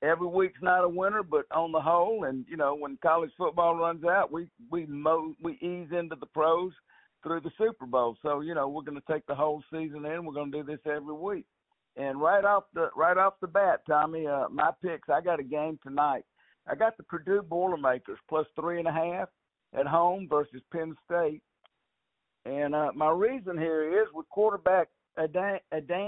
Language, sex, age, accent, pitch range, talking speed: English, male, 60-79, American, 150-180 Hz, 200 wpm